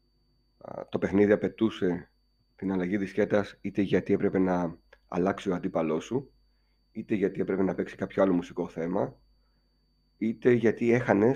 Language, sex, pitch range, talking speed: Greek, male, 90-115 Hz, 135 wpm